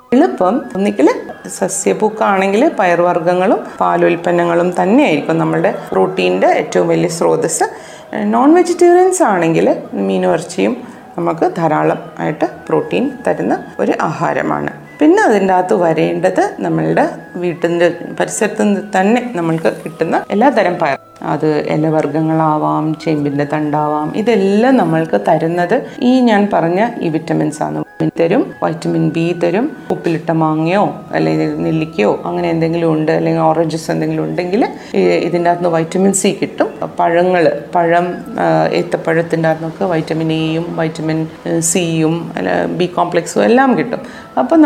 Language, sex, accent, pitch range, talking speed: Malayalam, female, native, 160-205 Hz, 115 wpm